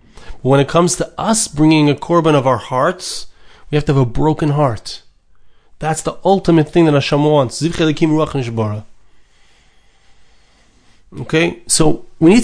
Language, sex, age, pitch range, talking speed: English, male, 30-49, 135-170 Hz, 140 wpm